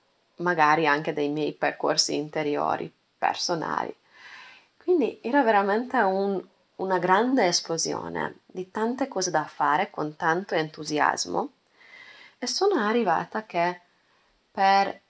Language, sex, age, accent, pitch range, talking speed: Italian, female, 20-39, native, 160-195 Hz, 105 wpm